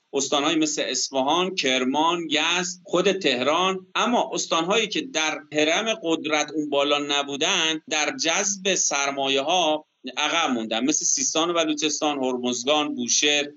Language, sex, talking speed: Persian, male, 120 wpm